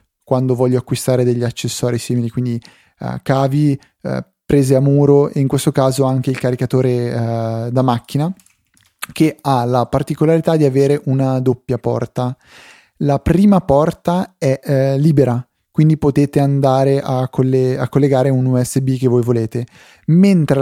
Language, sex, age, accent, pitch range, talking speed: Italian, male, 20-39, native, 120-145 Hz, 135 wpm